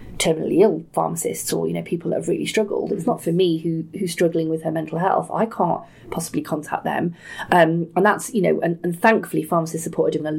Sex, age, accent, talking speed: female, 30-49, British, 230 wpm